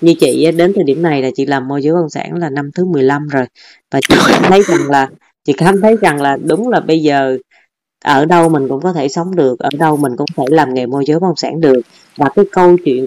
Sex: female